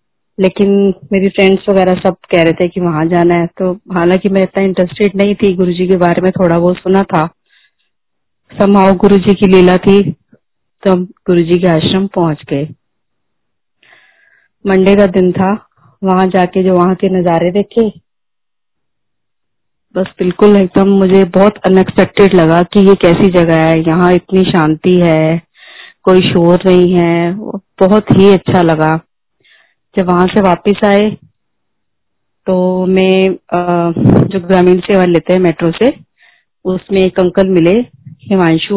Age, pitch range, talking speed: 20-39, 175-195 Hz, 145 wpm